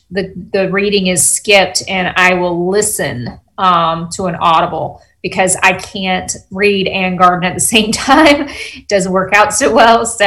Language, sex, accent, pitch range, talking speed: English, female, American, 180-205 Hz, 175 wpm